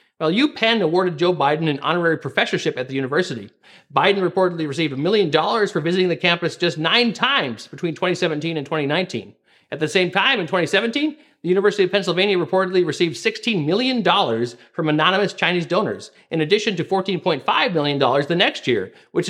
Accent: American